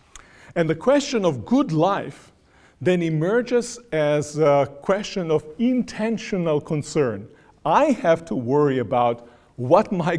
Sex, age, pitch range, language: male, 50-69, 140-180 Hz, English